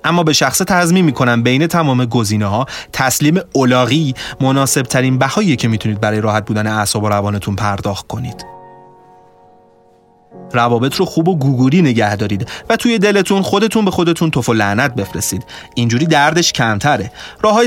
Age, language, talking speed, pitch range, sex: 30-49, Persian, 155 wpm, 110-160 Hz, male